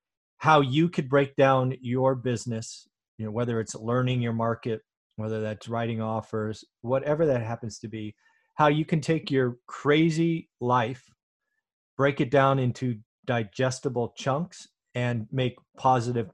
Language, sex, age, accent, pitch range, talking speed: English, male, 30-49, American, 115-145 Hz, 145 wpm